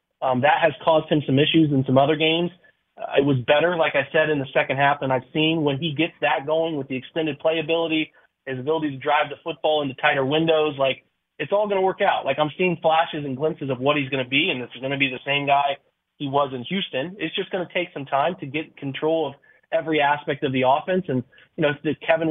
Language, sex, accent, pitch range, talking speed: English, male, American, 140-165 Hz, 260 wpm